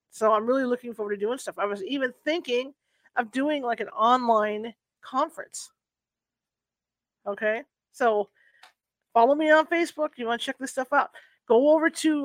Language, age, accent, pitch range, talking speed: English, 40-59, American, 225-275 Hz, 165 wpm